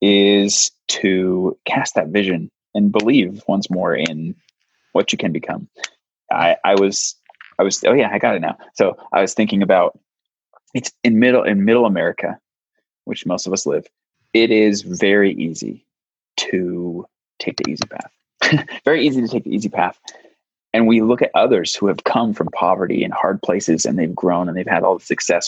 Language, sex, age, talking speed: English, male, 20-39, 185 wpm